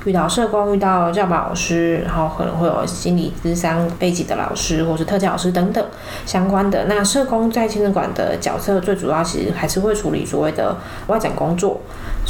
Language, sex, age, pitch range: Chinese, female, 20-39, 165-210 Hz